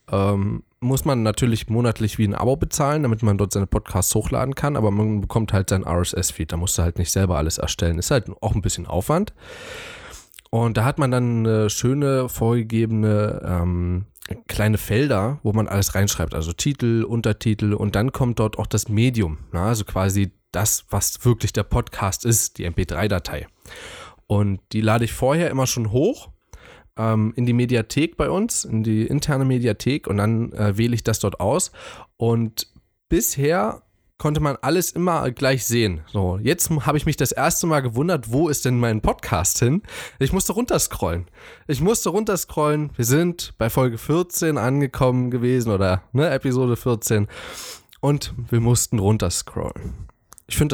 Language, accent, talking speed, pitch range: German, German, 165 wpm, 100-130 Hz